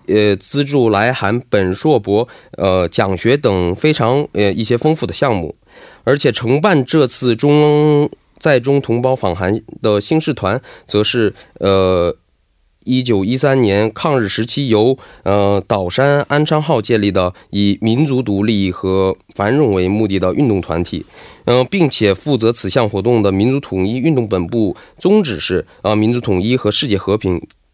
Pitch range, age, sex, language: 95-135 Hz, 20-39, male, Korean